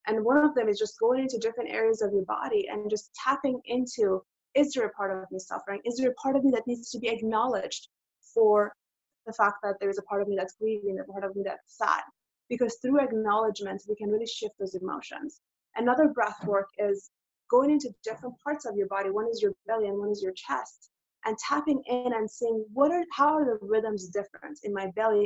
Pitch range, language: 205-270 Hz, English